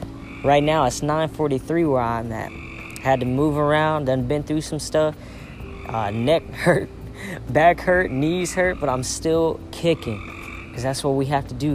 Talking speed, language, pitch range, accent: 175 wpm, English, 115-155 Hz, American